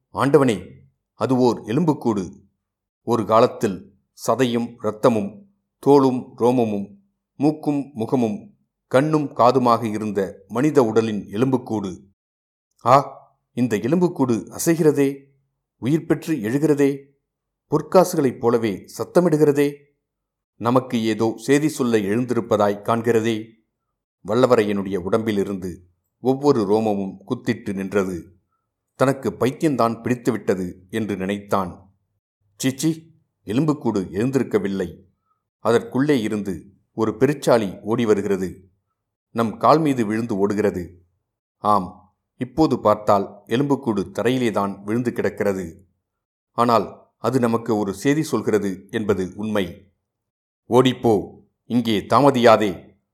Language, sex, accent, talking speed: Tamil, male, native, 85 wpm